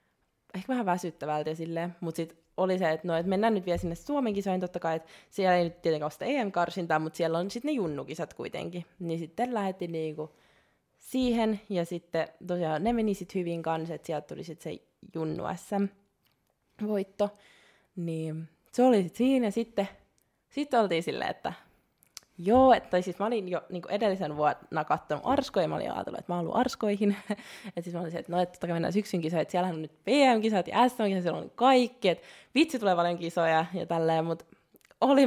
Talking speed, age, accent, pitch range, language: 195 wpm, 20-39, native, 165-210 Hz, Finnish